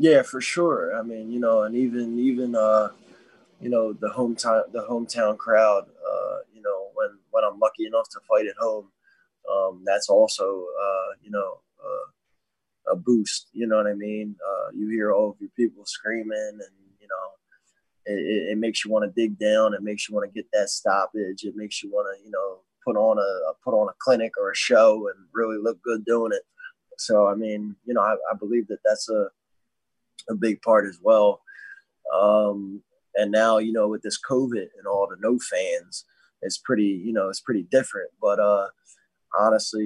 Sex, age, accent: male, 20-39, American